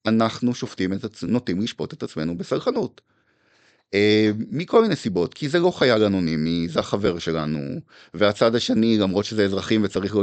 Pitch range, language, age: 100-155 Hz, Hebrew, 30-49